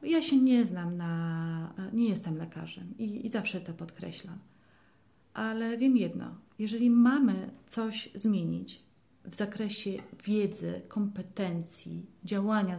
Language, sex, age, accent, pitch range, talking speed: Polish, female, 30-49, native, 185-250 Hz, 115 wpm